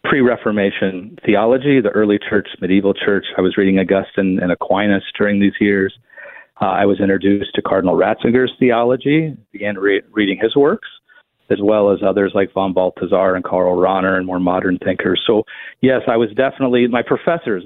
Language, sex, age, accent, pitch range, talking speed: English, male, 40-59, American, 100-135 Hz, 170 wpm